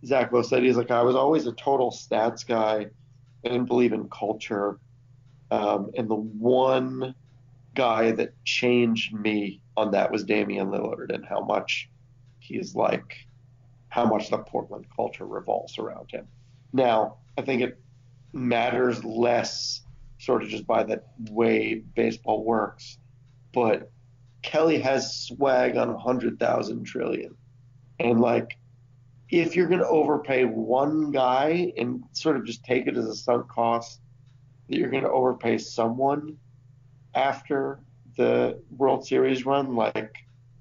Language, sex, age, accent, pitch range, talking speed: English, male, 30-49, American, 115-130 Hz, 140 wpm